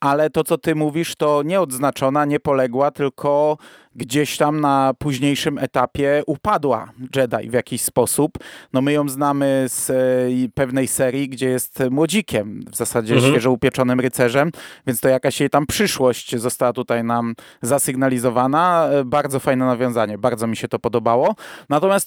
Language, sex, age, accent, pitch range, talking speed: Polish, male, 30-49, native, 130-160 Hz, 150 wpm